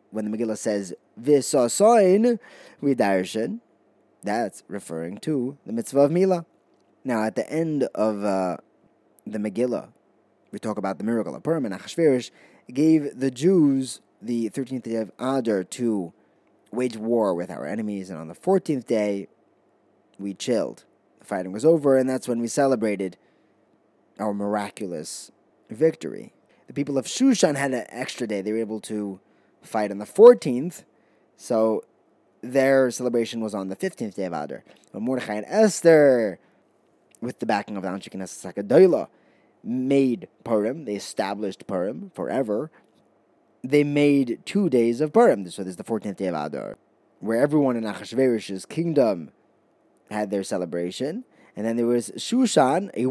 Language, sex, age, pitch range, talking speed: English, male, 20-39, 105-140 Hz, 150 wpm